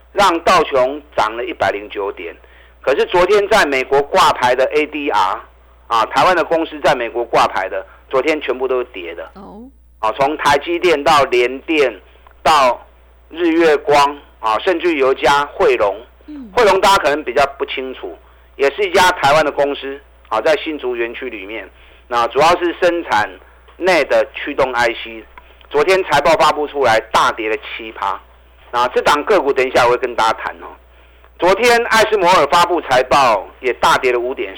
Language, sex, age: Chinese, male, 50-69